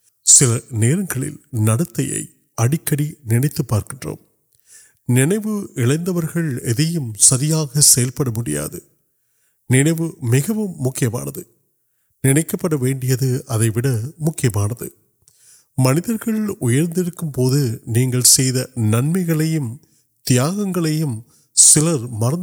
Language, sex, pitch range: Urdu, male, 120-155 Hz